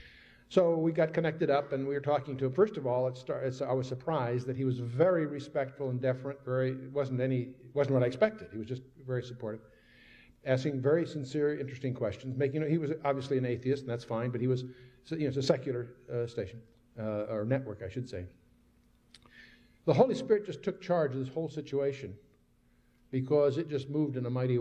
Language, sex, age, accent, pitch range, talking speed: English, male, 60-79, American, 130-170 Hz, 210 wpm